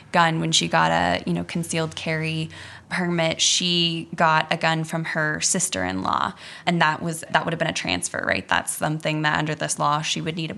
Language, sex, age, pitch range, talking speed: English, female, 10-29, 155-175 Hz, 210 wpm